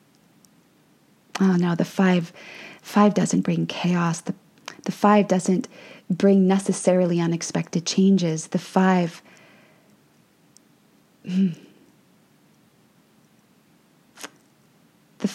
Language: English